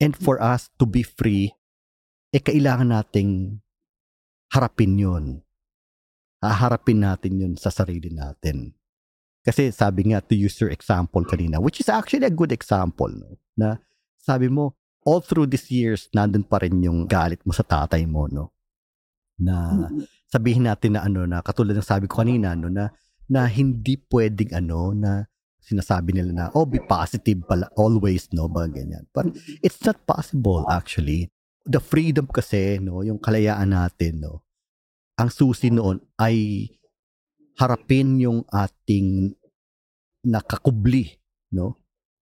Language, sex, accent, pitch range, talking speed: Filipino, male, native, 90-120 Hz, 145 wpm